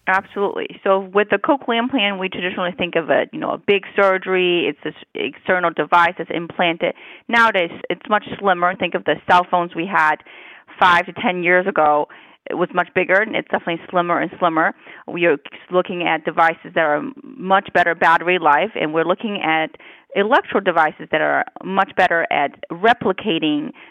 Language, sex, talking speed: English, female, 175 wpm